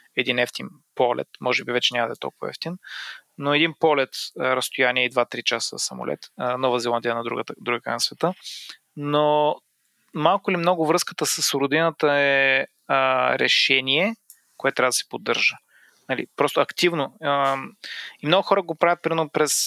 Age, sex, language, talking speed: 30-49, male, Bulgarian, 155 wpm